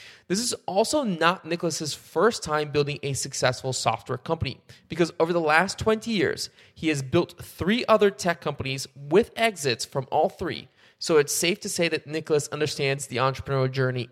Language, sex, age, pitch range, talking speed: English, male, 20-39, 130-170 Hz, 175 wpm